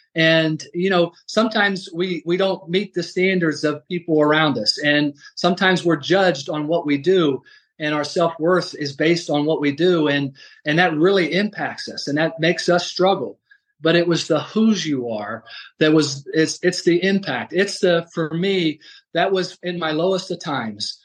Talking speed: 190 wpm